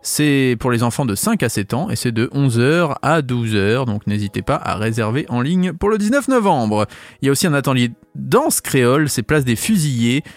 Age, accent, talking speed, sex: 20-39, French, 220 wpm, male